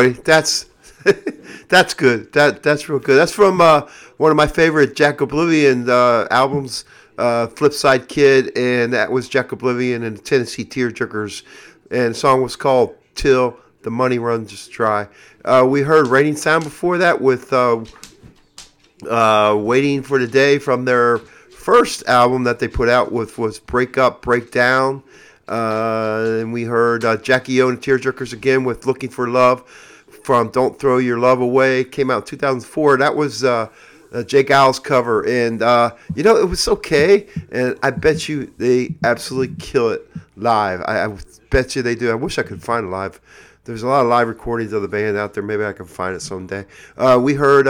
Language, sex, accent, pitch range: English, male, American, 120-140 Hz